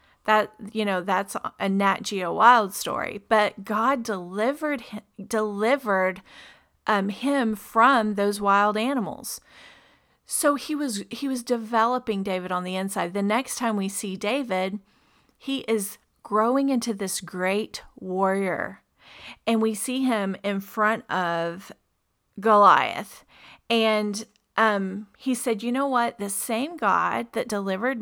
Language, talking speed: English, 135 wpm